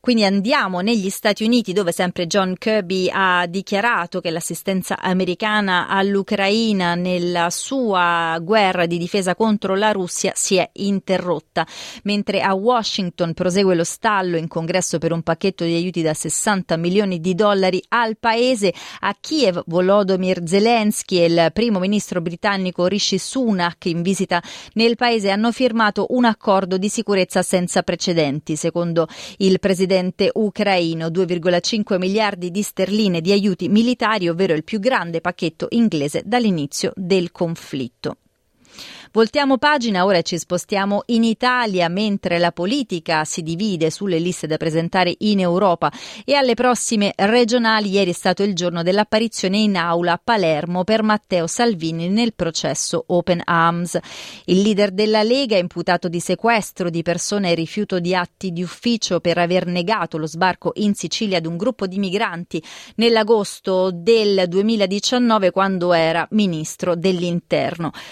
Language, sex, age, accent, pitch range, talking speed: Italian, female, 30-49, native, 175-215 Hz, 145 wpm